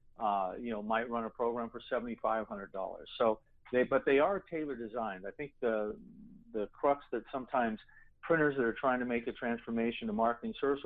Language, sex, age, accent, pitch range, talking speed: English, male, 50-69, American, 110-135 Hz, 190 wpm